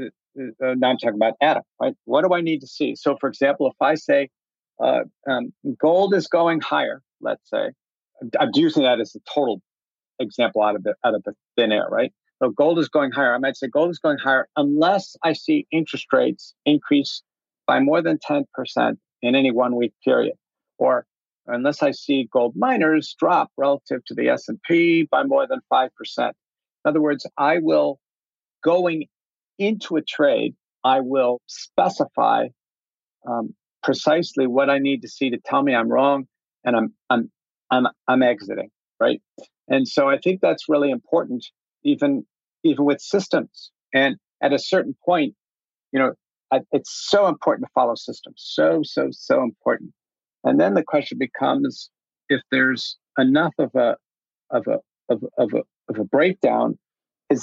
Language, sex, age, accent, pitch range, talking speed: English, male, 50-69, American, 135-185 Hz, 170 wpm